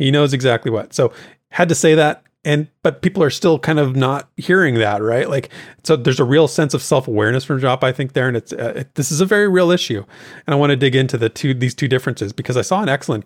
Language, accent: English, American